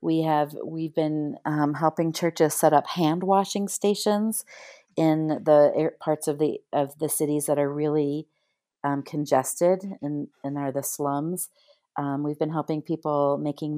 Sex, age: female, 40-59